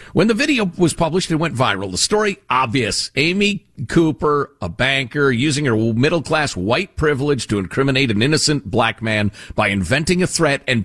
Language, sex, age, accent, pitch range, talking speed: English, male, 50-69, American, 110-165 Hz, 170 wpm